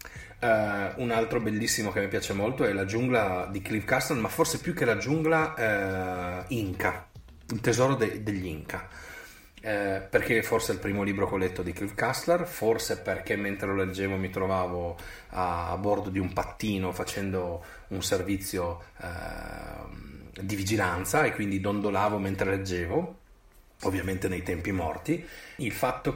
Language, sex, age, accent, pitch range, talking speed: Italian, male, 30-49, native, 95-115 Hz, 160 wpm